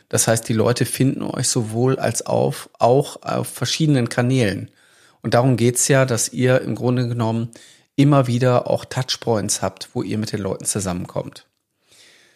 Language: German